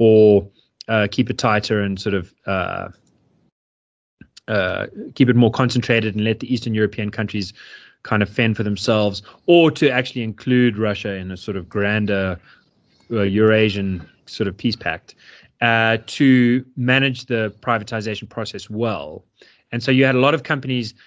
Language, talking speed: English, 160 wpm